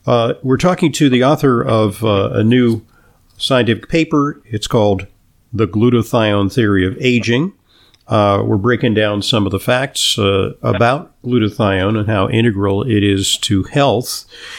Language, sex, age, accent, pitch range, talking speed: English, male, 50-69, American, 105-130 Hz, 150 wpm